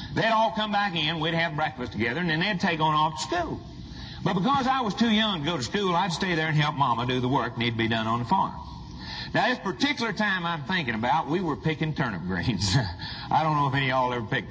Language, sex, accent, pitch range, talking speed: English, male, American, 125-180 Hz, 265 wpm